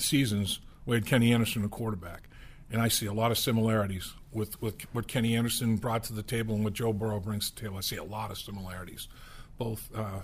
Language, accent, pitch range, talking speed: English, American, 110-125 Hz, 235 wpm